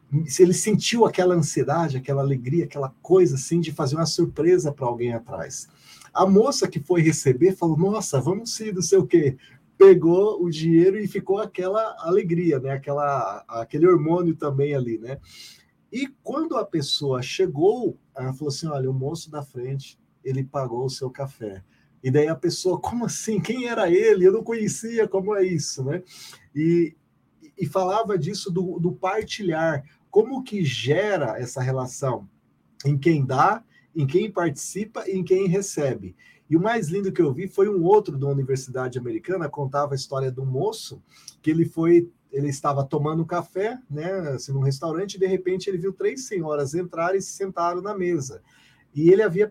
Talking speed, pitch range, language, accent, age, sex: 175 wpm, 140-185 Hz, Portuguese, Brazilian, 40-59, male